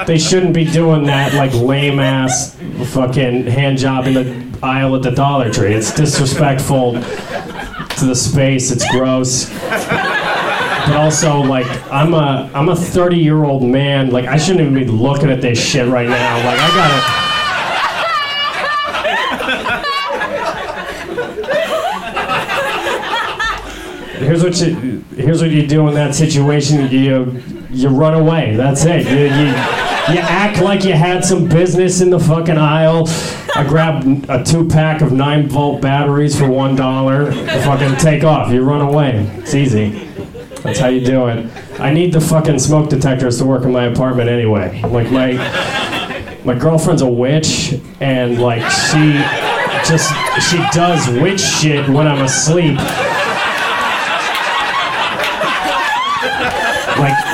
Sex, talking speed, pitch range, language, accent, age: male, 140 wpm, 130-160 Hz, English, American, 30-49